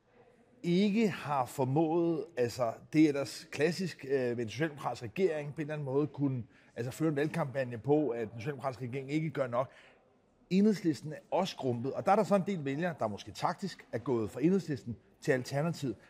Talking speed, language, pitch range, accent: 190 wpm, Danish, 135-180 Hz, native